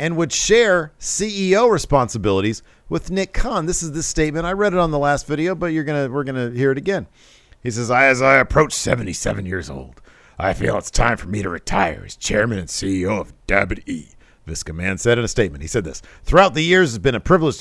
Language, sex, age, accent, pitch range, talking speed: English, male, 50-69, American, 100-140 Hz, 220 wpm